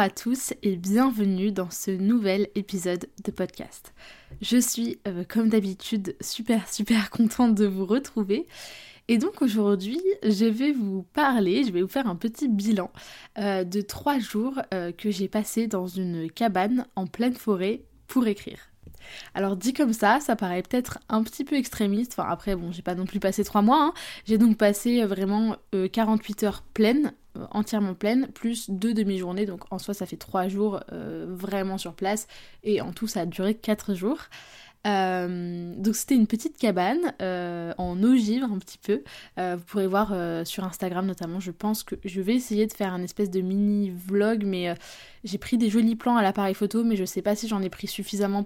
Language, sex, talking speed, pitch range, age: French, female, 195 wpm, 190-225 Hz, 20-39